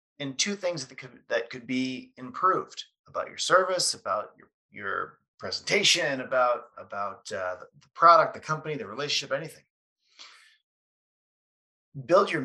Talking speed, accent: 140 wpm, American